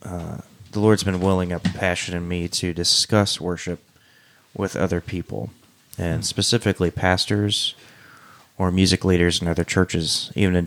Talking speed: 145 wpm